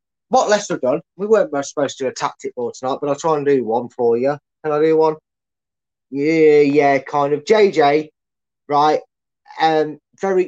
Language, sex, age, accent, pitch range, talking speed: English, male, 20-39, British, 135-170 Hz, 190 wpm